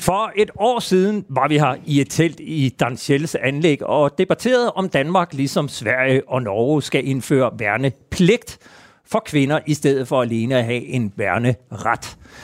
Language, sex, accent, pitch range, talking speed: Danish, male, native, 135-195 Hz, 165 wpm